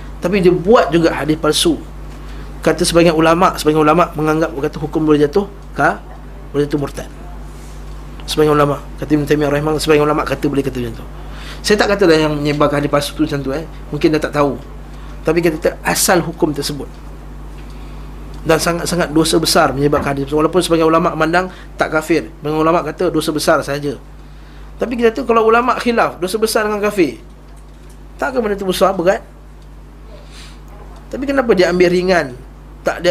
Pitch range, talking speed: 140-195 Hz, 170 wpm